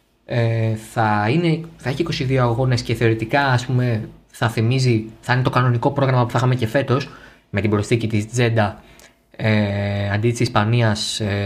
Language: Greek